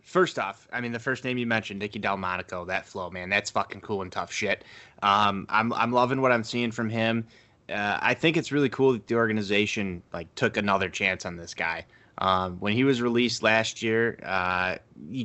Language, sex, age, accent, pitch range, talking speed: English, male, 20-39, American, 105-125 Hz, 210 wpm